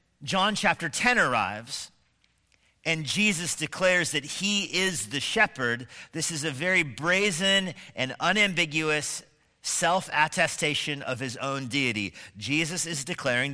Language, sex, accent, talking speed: English, male, American, 120 wpm